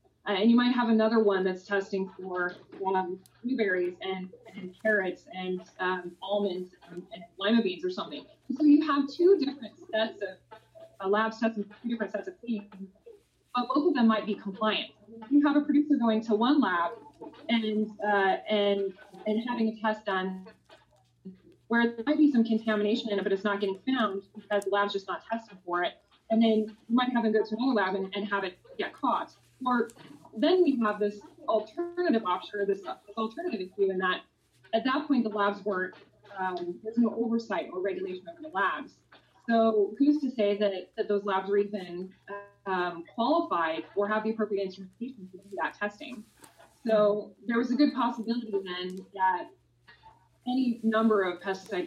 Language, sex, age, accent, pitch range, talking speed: English, female, 20-39, American, 190-235 Hz, 185 wpm